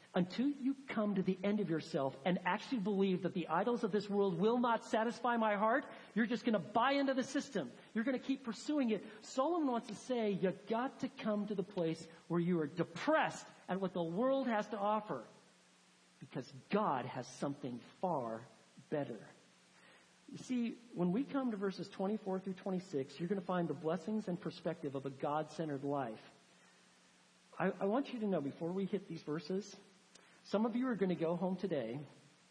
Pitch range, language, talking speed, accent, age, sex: 145-210 Hz, English, 195 wpm, American, 50-69, male